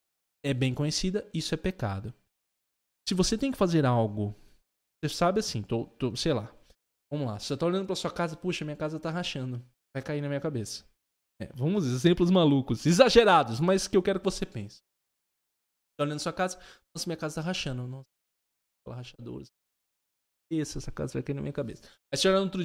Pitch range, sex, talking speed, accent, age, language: 130-190 Hz, male, 195 wpm, Brazilian, 20-39, Portuguese